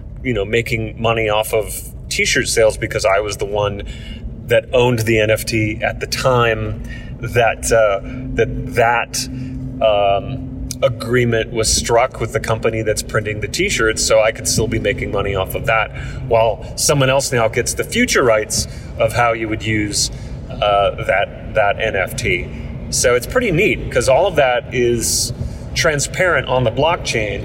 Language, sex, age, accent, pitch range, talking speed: English, male, 30-49, American, 110-130 Hz, 165 wpm